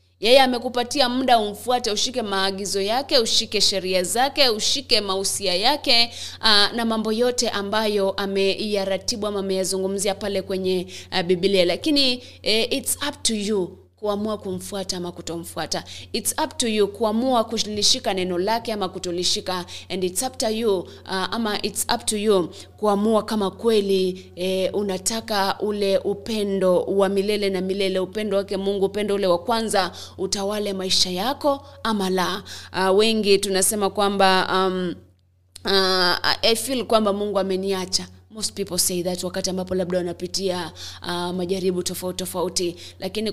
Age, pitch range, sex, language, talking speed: 20-39, 185-215 Hz, female, English, 145 wpm